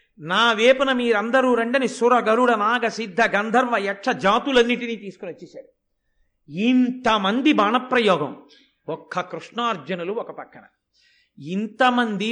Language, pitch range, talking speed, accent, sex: Telugu, 190-255 Hz, 95 wpm, native, male